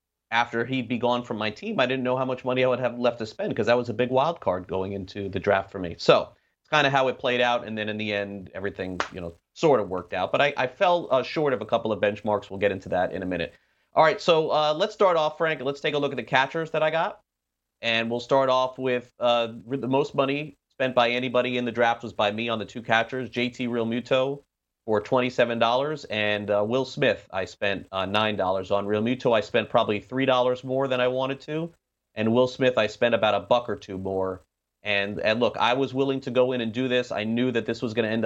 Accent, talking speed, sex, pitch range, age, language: American, 260 wpm, male, 105-130 Hz, 30-49, English